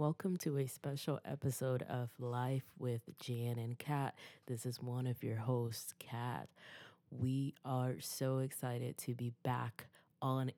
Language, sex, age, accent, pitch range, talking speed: English, female, 20-39, American, 125-155 Hz, 145 wpm